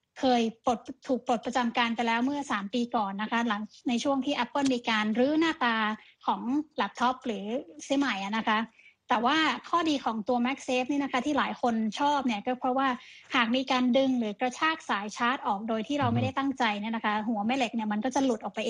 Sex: female